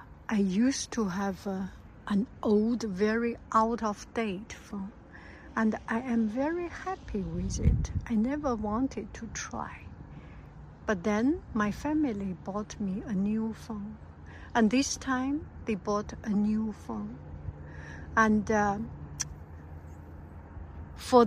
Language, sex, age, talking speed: English, female, 60-79, 120 wpm